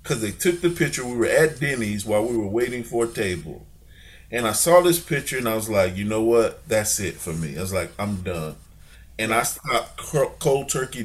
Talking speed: 230 wpm